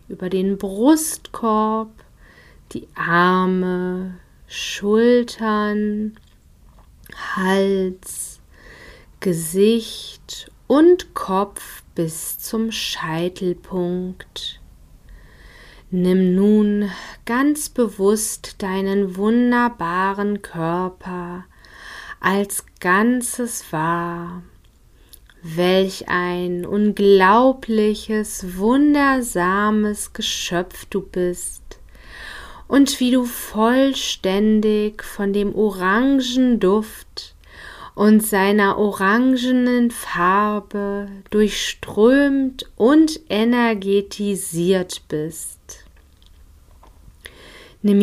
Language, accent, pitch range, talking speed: German, German, 180-225 Hz, 55 wpm